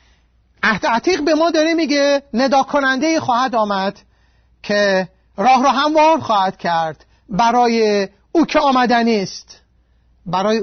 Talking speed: 105 wpm